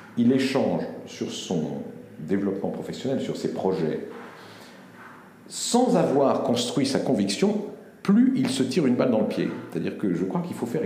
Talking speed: 165 wpm